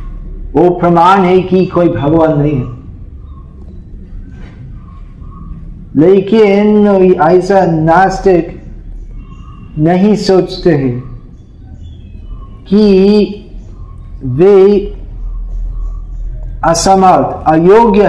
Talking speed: 60 wpm